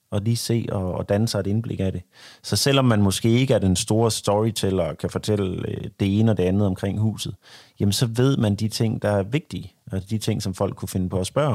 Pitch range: 95-110 Hz